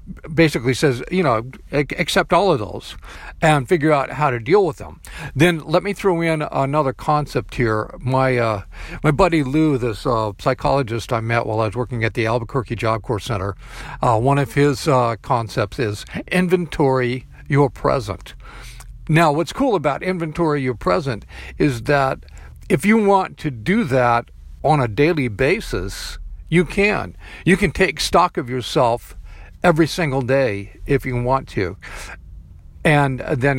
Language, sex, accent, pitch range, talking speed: English, male, American, 115-155 Hz, 160 wpm